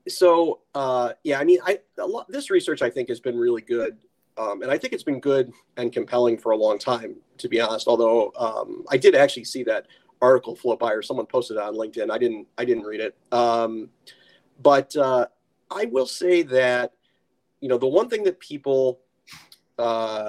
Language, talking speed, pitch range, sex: English, 200 wpm, 120-190 Hz, male